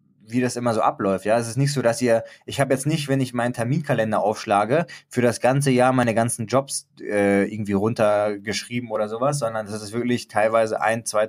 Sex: male